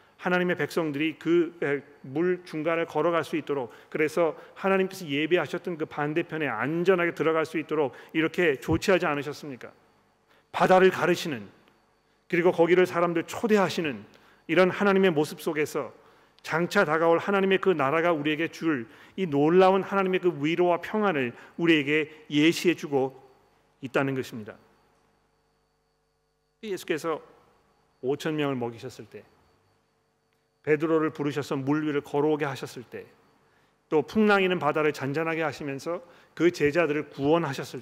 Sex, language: male, Korean